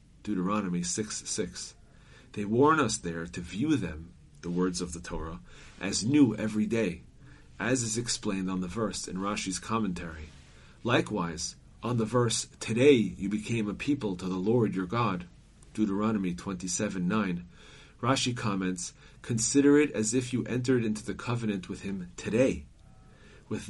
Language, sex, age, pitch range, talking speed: English, male, 40-59, 90-120 Hz, 150 wpm